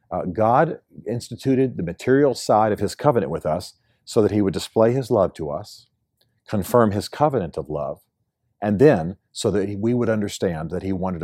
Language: English